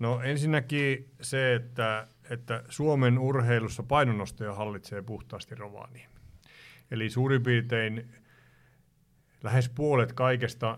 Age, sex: 50-69, male